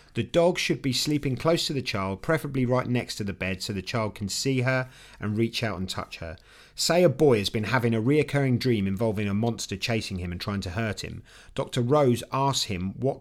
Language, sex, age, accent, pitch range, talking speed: English, male, 40-59, British, 105-135 Hz, 230 wpm